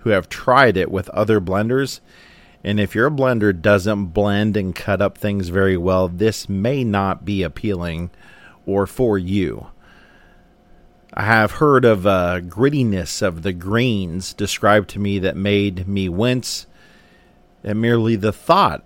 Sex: male